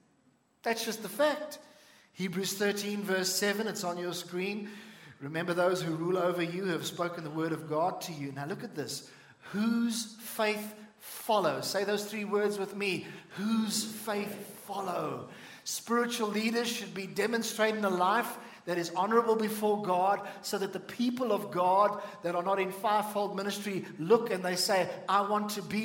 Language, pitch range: English, 175-215 Hz